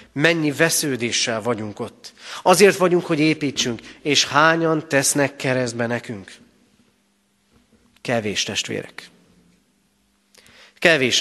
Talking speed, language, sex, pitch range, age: 85 wpm, Hungarian, male, 105-145 Hz, 30-49